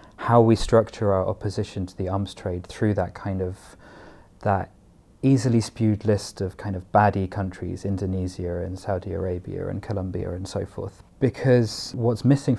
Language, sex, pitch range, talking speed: English, male, 95-110 Hz, 160 wpm